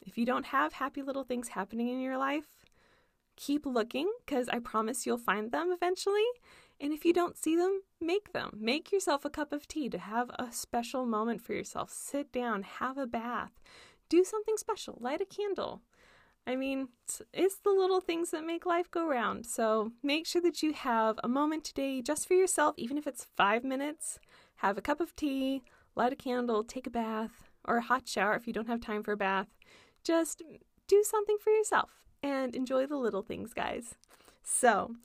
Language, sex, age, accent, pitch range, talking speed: English, female, 20-39, American, 235-330 Hz, 200 wpm